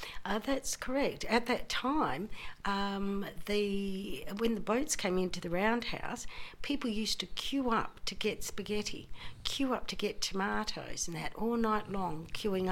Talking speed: 160 wpm